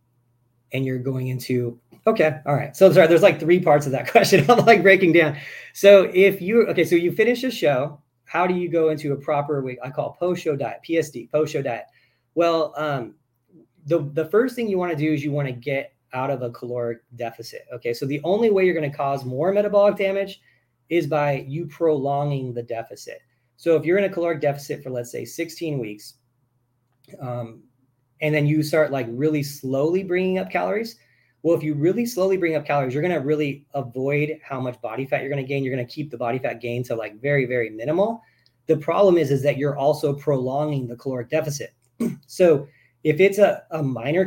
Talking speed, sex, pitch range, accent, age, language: 210 wpm, male, 125-170 Hz, American, 30-49, English